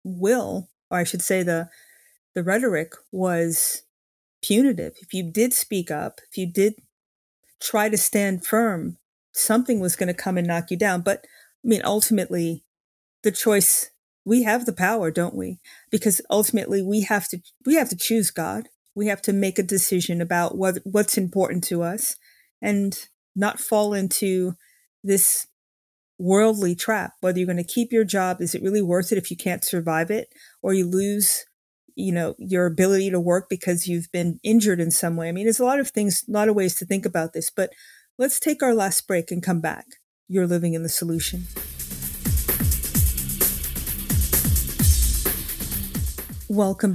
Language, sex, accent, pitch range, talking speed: English, female, American, 175-215 Hz, 170 wpm